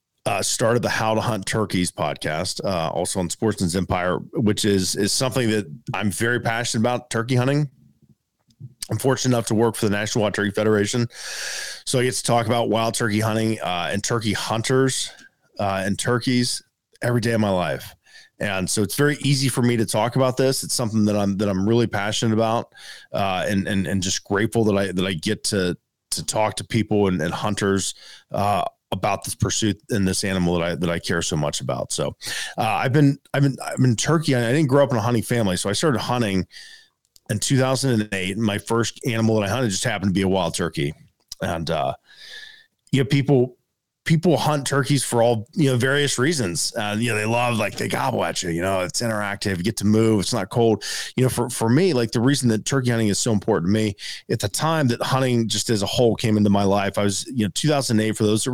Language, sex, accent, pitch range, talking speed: English, male, American, 100-125 Hz, 225 wpm